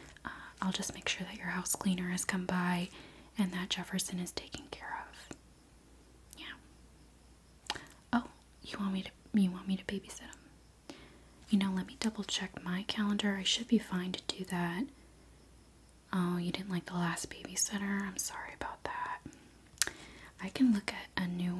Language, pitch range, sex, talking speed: English, 180-205 Hz, female, 170 wpm